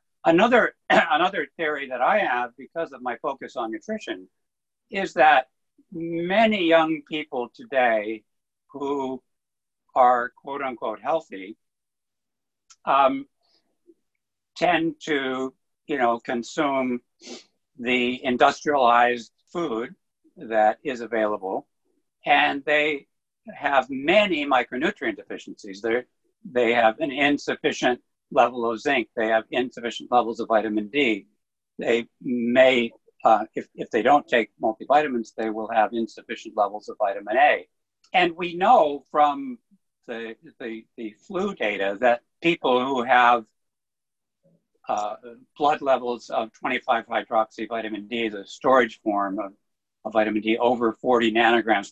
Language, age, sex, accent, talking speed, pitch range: English, 60-79, male, American, 120 wpm, 115-160 Hz